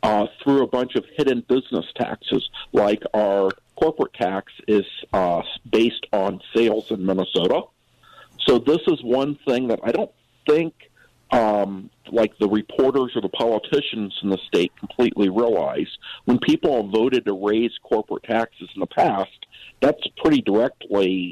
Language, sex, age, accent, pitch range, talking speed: English, male, 50-69, American, 105-135 Hz, 150 wpm